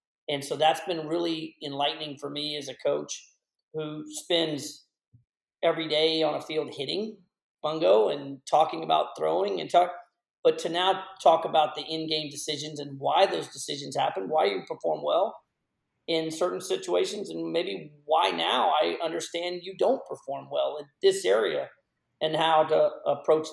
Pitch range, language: 135-170 Hz, English